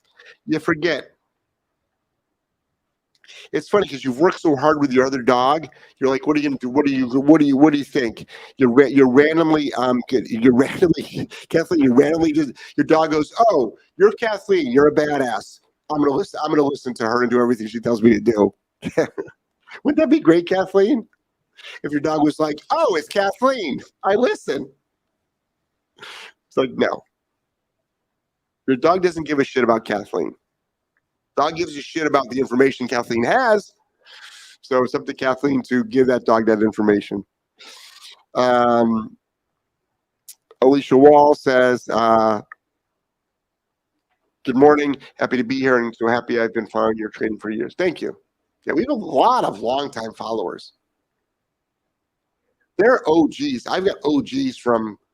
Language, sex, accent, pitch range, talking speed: English, male, American, 125-170 Hz, 165 wpm